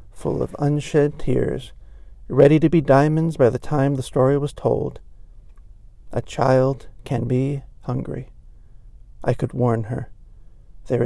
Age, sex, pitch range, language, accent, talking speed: 40-59, male, 105-140 Hz, English, American, 135 wpm